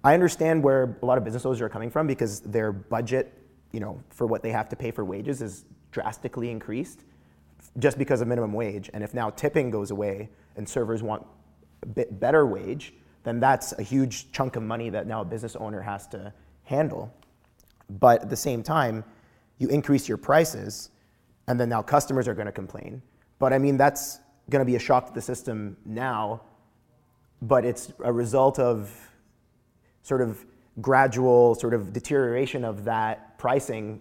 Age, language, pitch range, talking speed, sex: 30-49, English, 105-125 Hz, 185 wpm, male